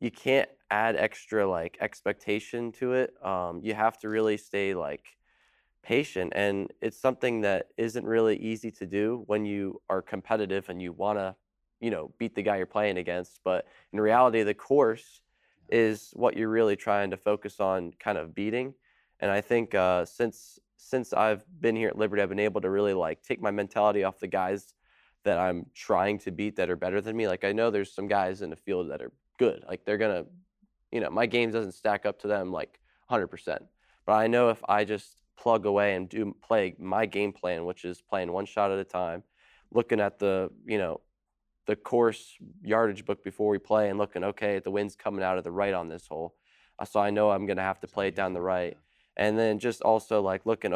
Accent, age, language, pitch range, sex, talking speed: American, 20-39, English, 95-110 Hz, male, 210 wpm